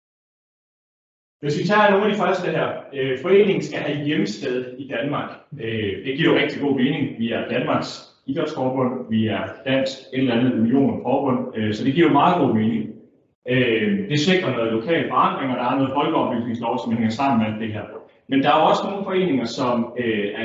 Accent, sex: native, male